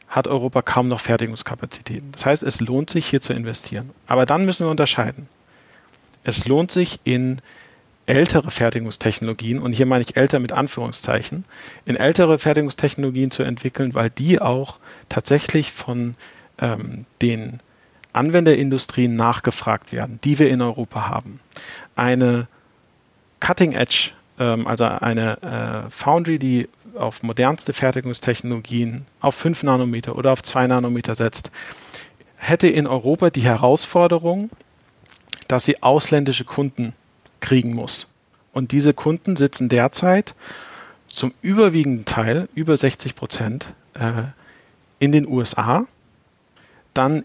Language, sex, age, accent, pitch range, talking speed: German, male, 40-59, German, 120-145 Hz, 120 wpm